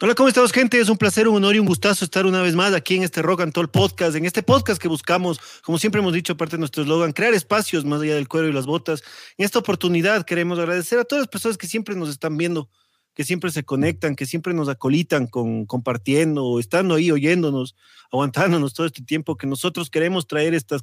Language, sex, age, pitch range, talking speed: Spanish, male, 30-49, 140-180 Hz, 235 wpm